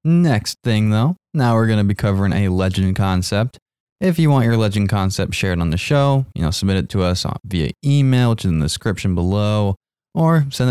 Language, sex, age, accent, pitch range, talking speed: English, male, 20-39, American, 90-110 Hz, 220 wpm